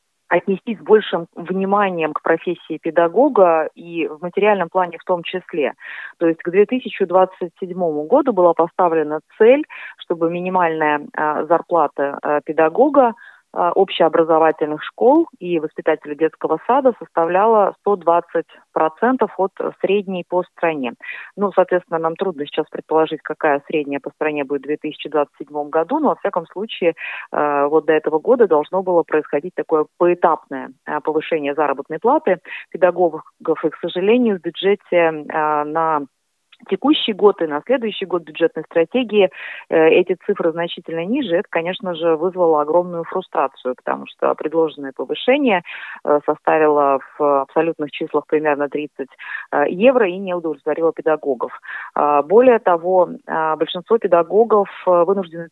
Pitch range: 155-185 Hz